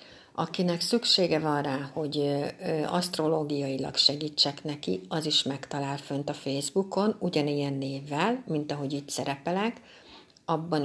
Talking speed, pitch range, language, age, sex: 115 wpm, 145-180 Hz, Hungarian, 60-79, female